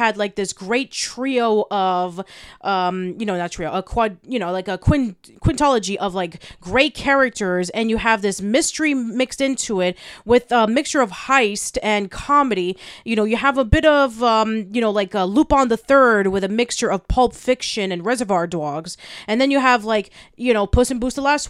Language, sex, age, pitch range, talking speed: English, female, 30-49, 190-255 Hz, 210 wpm